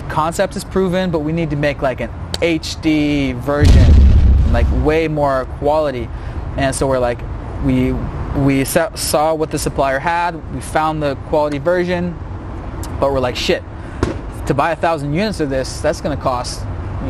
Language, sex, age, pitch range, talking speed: English, male, 20-39, 130-175 Hz, 165 wpm